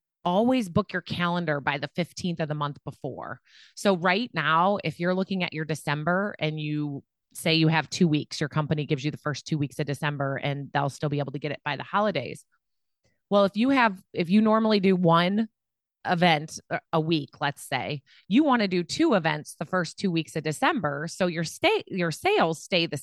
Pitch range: 150-185 Hz